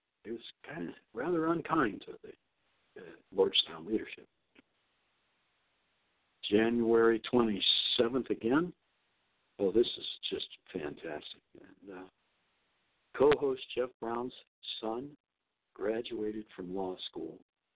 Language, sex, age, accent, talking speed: English, male, 60-79, American, 95 wpm